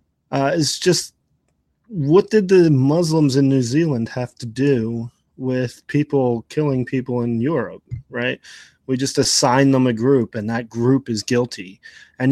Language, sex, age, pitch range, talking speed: English, male, 20-39, 115-140 Hz, 155 wpm